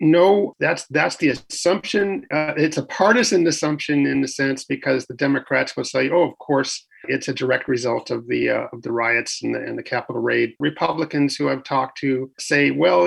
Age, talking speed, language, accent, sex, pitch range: 40-59, 200 wpm, English, American, male, 135-165 Hz